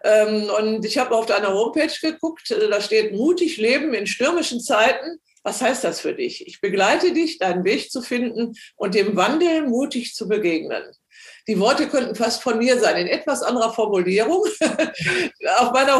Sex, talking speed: female, 170 wpm